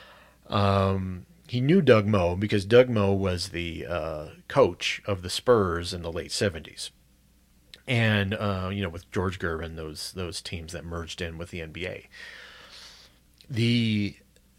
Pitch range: 85-105 Hz